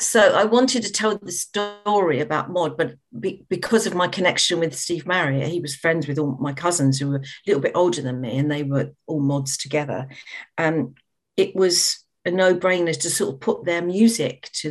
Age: 50-69